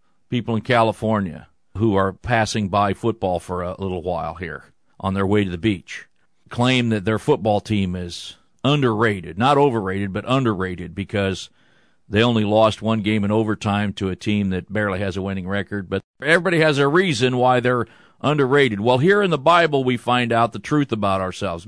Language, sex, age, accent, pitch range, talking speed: English, male, 40-59, American, 100-135 Hz, 185 wpm